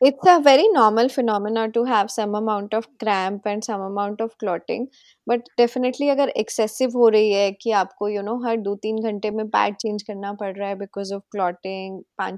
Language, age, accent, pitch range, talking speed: Hindi, 20-39, native, 200-240 Hz, 215 wpm